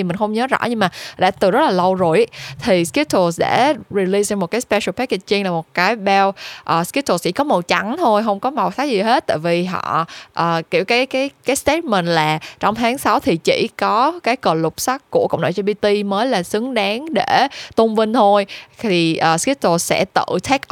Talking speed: 215 wpm